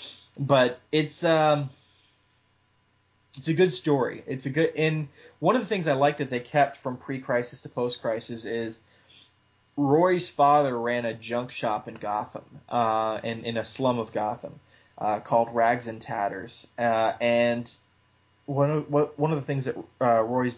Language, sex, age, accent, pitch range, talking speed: English, male, 20-39, American, 110-140 Hz, 165 wpm